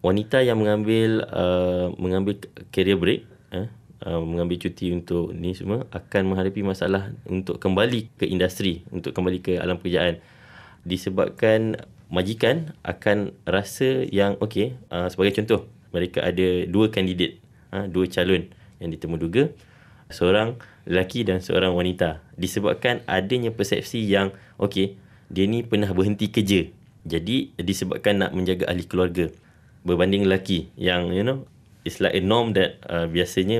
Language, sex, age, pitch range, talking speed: English, male, 20-39, 90-105 Hz, 140 wpm